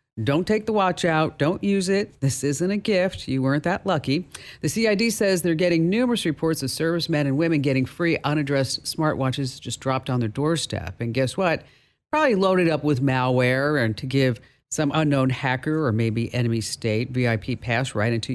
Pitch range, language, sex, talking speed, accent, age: 120-165 Hz, English, female, 190 wpm, American, 50-69